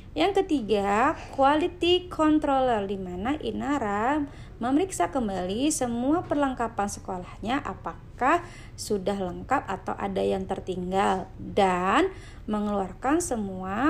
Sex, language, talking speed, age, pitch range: female, Indonesian, 95 wpm, 20-39, 195-280 Hz